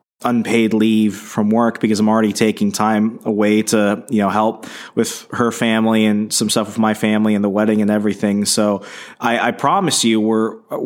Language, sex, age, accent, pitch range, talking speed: English, male, 20-39, American, 105-120 Hz, 190 wpm